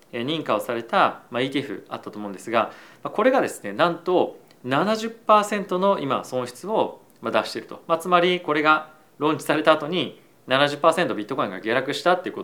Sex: male